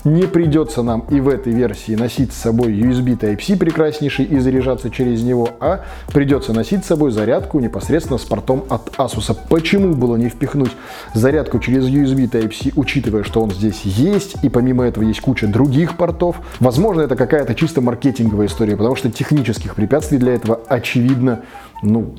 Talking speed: 170 wpm